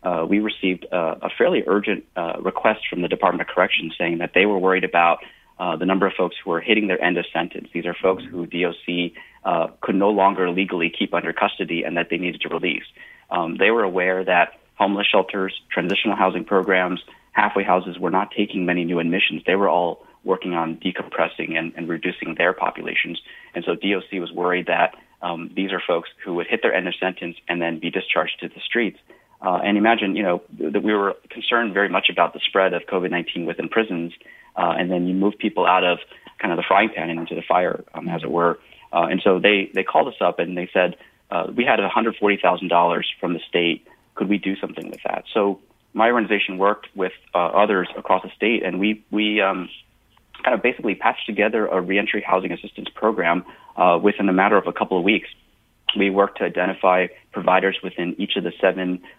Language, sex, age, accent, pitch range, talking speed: English, male, 30-49, American, 85-100 Hz, 215 wpm